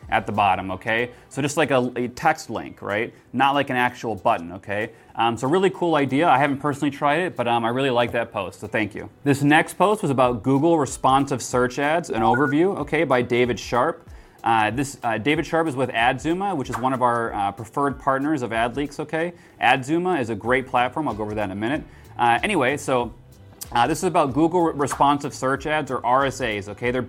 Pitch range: 120-145 Hz